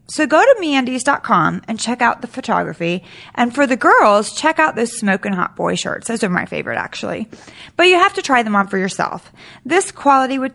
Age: 30-49